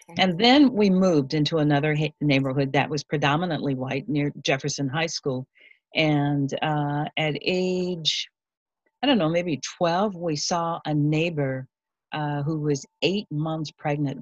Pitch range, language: 140-175 Hz, English